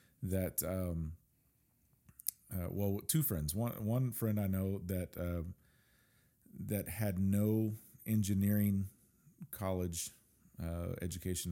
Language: English